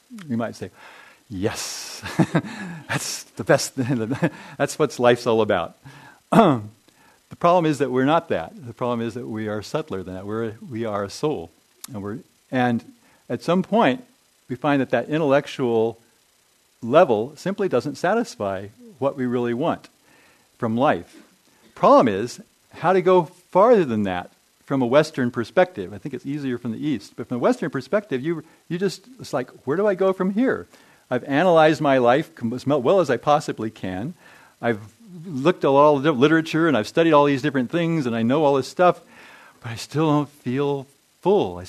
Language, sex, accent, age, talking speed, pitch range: English, male, American, 50-69, 185 wpm, 115-160 Hz